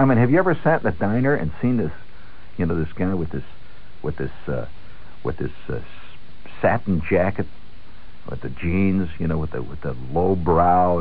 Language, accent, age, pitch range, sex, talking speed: English, American, 60-79, 80-115 Hz, male, 200 wpm